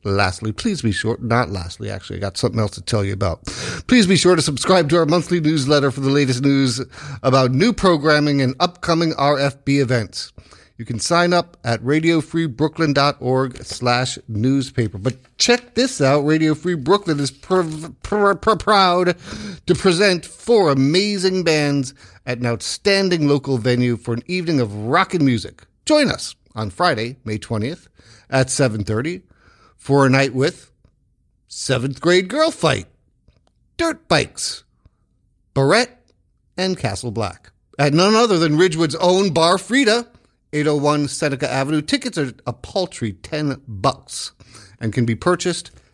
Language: English